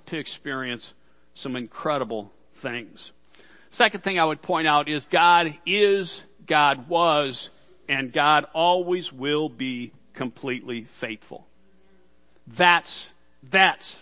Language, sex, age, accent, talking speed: English, male, 50-69, American, 105 wpm